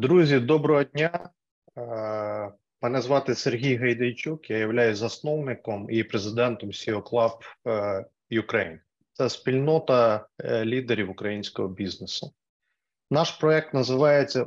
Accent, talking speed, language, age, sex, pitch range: native, 95 wpm, Ukrainian, 30-49, male, 115-145 Hz